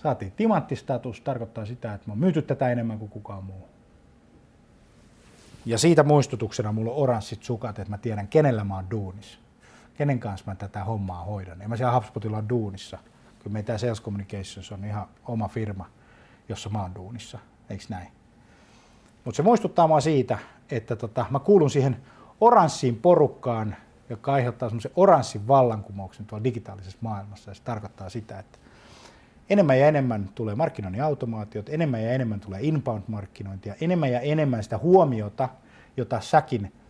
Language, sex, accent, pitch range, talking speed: Finnish, male, native, 105-130 Hz, 155 wpm